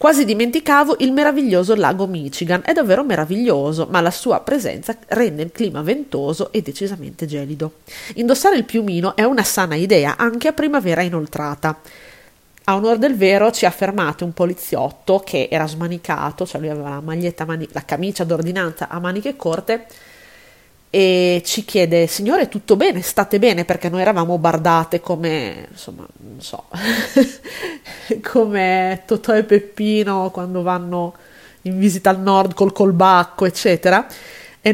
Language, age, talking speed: Italian, 30-49, 145 wpm